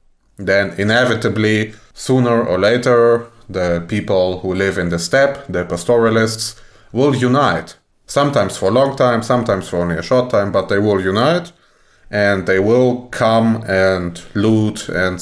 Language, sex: English, male